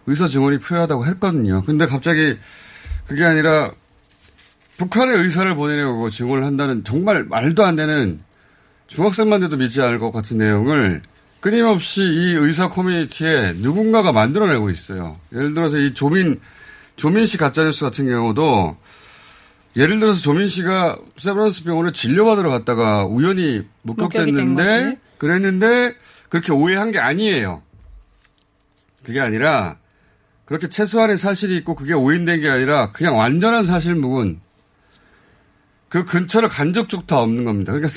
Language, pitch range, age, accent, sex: Korean, 115-180 Hz, 30-49, native, male